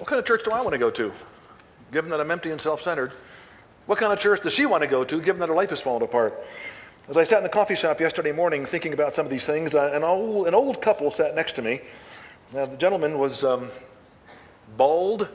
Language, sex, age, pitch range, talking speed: English, male, 50-69, 145-210 Hz, 245 wpm